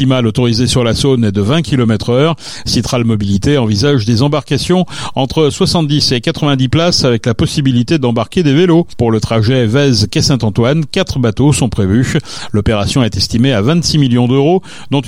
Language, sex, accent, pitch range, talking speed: French, male, French, 120-160 Hz, 175 wpm